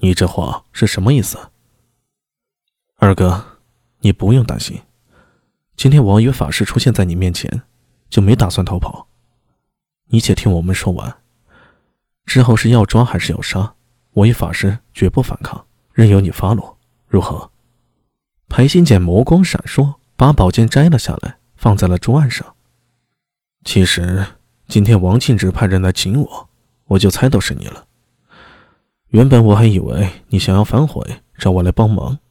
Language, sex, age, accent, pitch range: Chinese, male, 20-39, native, 95-125 Hz